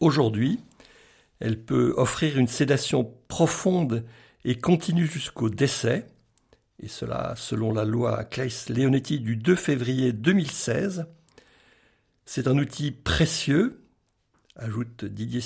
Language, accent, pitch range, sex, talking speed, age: French, French, 120-165 Hz, male, 105 wpm, 60-79